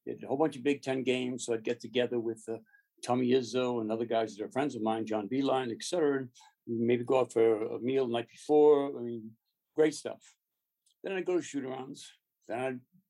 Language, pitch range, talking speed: English, 120-150 Hz, 225 wpm